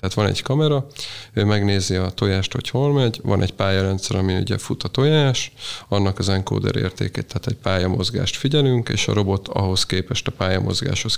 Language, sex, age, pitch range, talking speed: Hungarian, male, 30-49, 95-115 Hz, 180 wpm